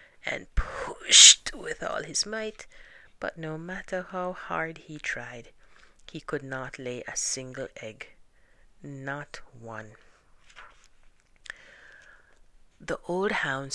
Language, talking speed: English, 110 wpm